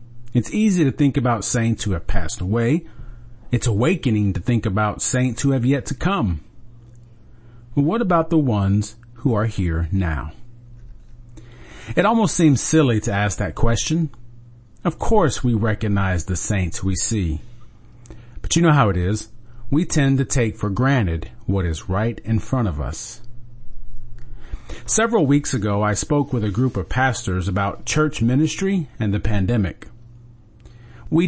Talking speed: 155 wpm